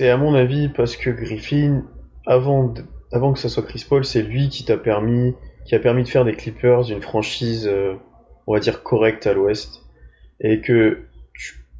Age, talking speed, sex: 20-39, 200 wpm, male